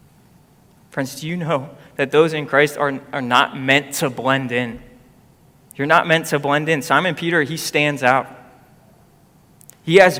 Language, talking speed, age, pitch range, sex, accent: English, 165 wpm, 20-39, 135-165 Hz, male, American